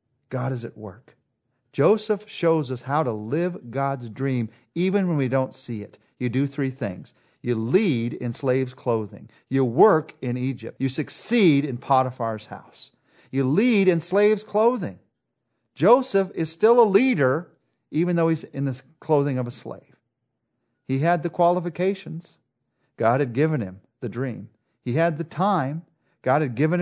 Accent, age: American, 40-59